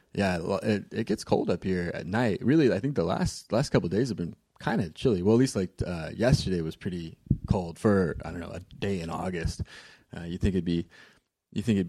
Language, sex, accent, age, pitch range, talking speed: English, male, American, 20-39, 85-100 Hz, 240 wpm